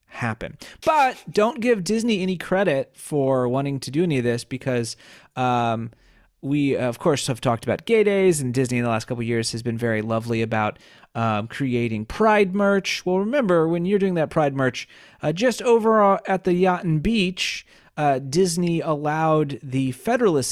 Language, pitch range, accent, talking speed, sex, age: English, 115-160 Hz, American, 180 wpm, male, 30-49